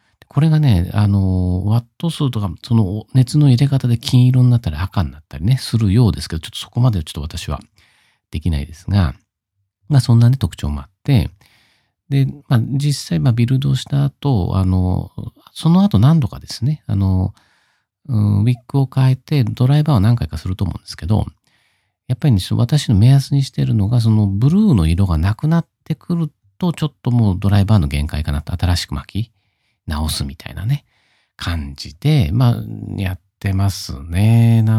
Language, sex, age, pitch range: Japanese, male, 50-69, 90-125 Hz